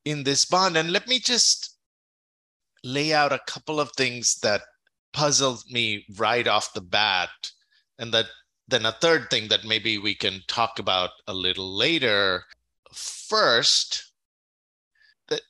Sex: male